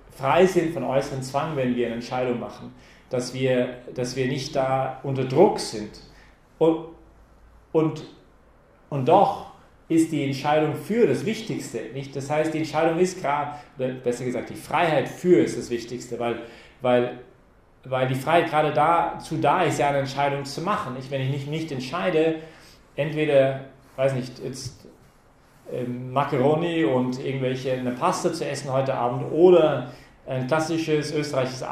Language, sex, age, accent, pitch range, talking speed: English, male, 40-59, German, 125-155 Hz, 155 wpm